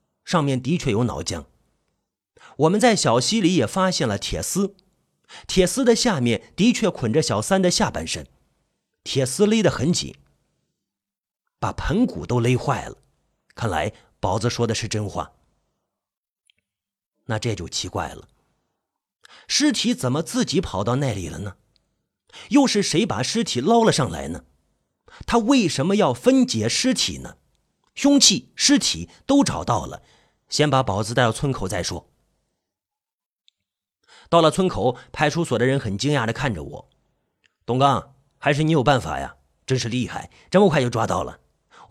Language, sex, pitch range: Chinese, male, 110-175 Hz